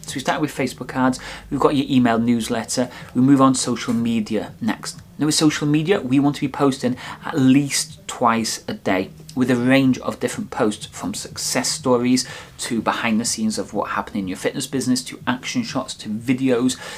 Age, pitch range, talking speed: 30-49, 120-145 Hz, 200 wpm